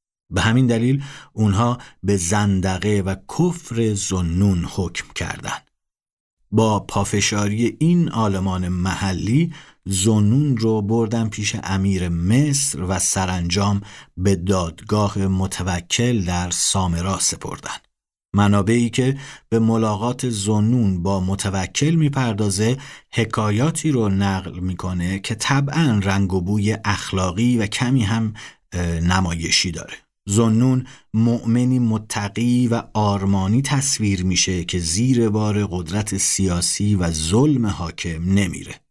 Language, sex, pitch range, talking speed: Persian, male, 95-115 Hz, 105 wpm